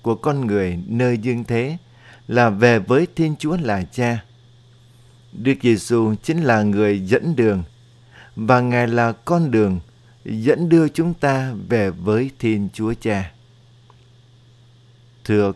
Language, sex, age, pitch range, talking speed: Vietnamese, male, 60-79, 110-130 Hz, 135 wpm